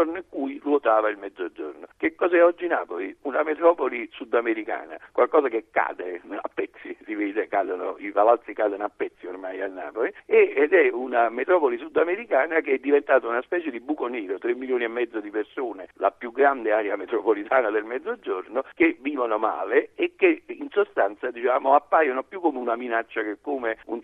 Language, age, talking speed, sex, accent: Italian, 60-79, 175 wpm, male, native